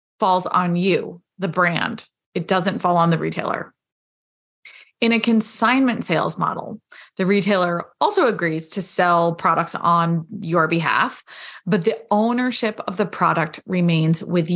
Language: English